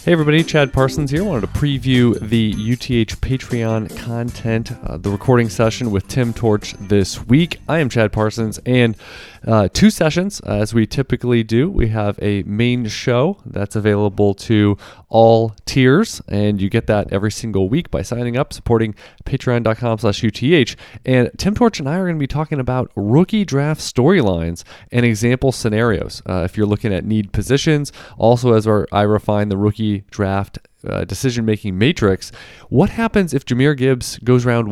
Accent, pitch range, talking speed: American, 105-130 Hz, 170 wpm